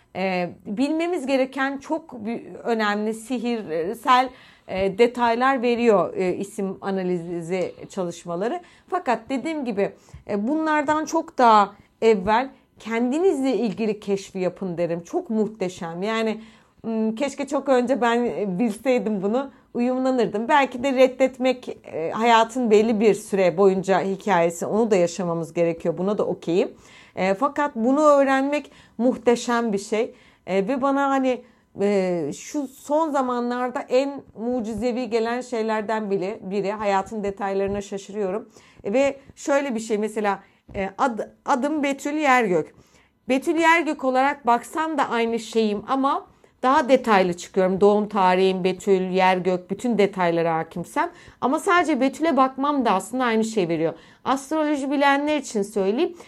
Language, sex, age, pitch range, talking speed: Turkish, female, 40-59, 200-270 Hz, 120 wpm